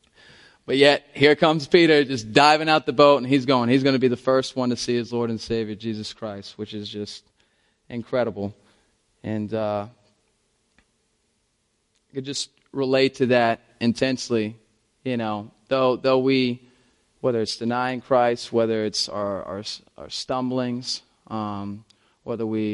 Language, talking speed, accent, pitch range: English, 155 wpm, American, 110-140 Hz